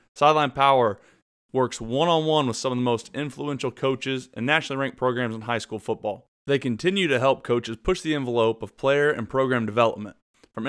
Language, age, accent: English, 30-49, American